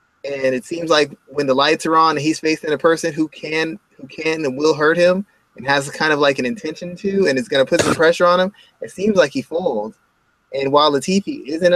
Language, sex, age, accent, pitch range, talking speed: English, male, 20-39, American, 140-180 Hz, 245 wpm